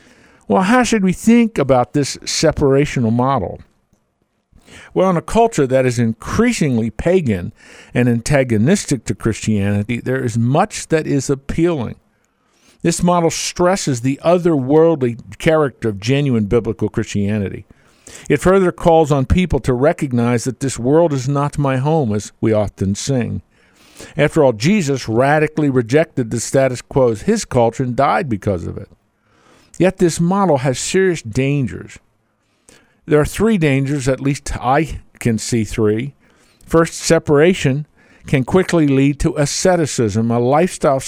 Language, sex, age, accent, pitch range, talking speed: English, male, 50-69, American, 115-165 Hz, 140 wpm